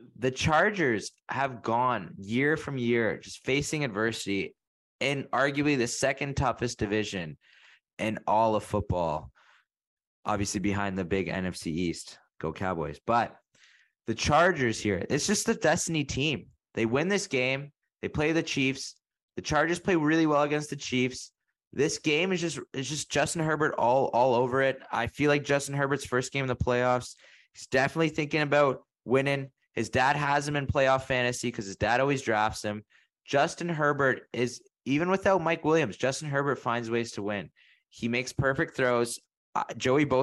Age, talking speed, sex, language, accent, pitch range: 20-39, 165 wpm, male, English, American, 110-145 Hz